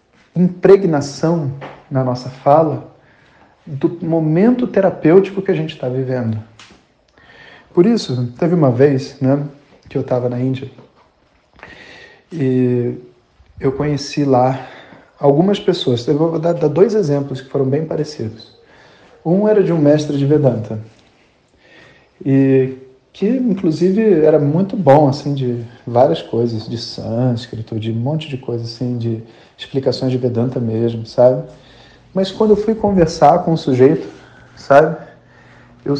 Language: Portuguese